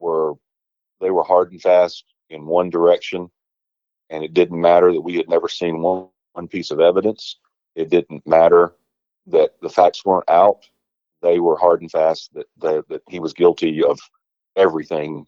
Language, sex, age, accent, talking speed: English, male, 40-59, American, 175 wpm